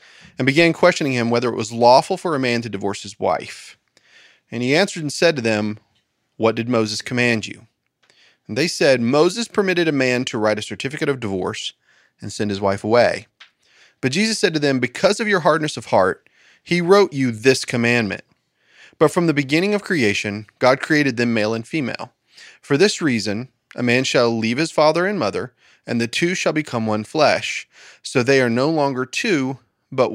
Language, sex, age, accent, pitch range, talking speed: English, male, 30-49, American, 115-160 Hz, 195 wpm